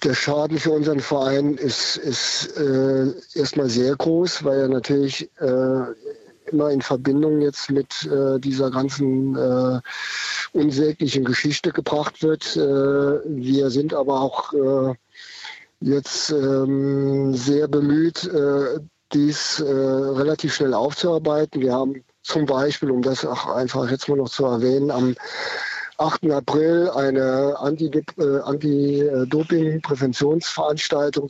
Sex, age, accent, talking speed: male, 50-69, German, 120 wpm